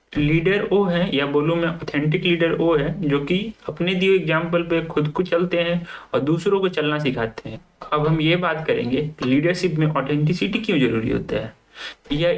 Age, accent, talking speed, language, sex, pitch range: 30-49, native, 190 wpm, Hindi, male, 150-190 Hz